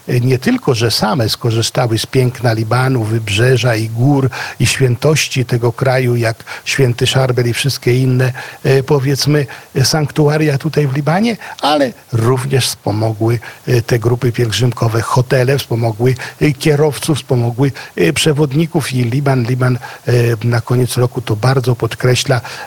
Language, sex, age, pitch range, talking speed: Polish, male, 50-69, 115-140 Hz, 120 wpm